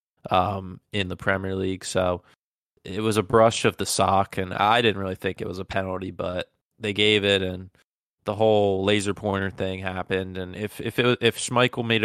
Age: 20-39